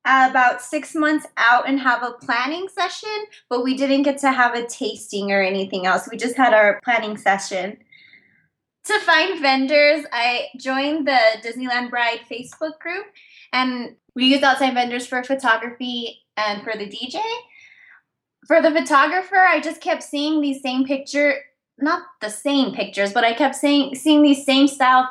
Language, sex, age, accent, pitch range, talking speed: English, female, 20-39, American, 215-280 Hz, 165 wpm